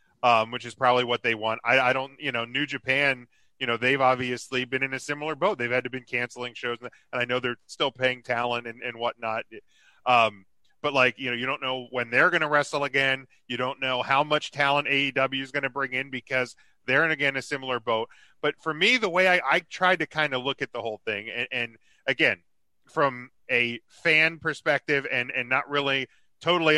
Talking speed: 225 wpm